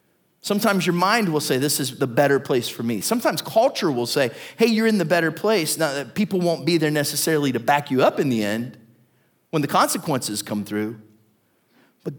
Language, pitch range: English, 150-210 Hz